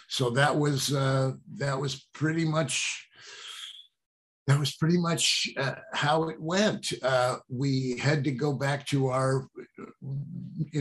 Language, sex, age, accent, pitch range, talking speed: English, male, 60-79, American, 135-175 Hz, 140 wpm